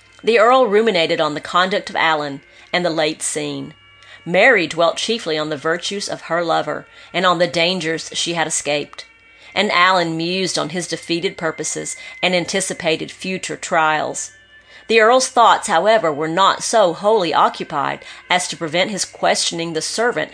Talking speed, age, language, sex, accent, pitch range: 160 wpm, 40-59, English, female, American, 160-210 Hz